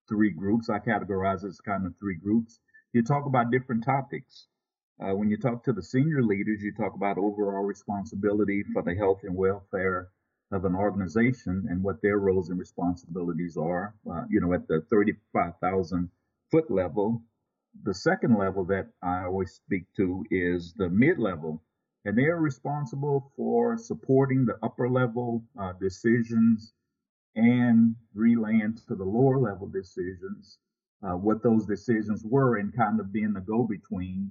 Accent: American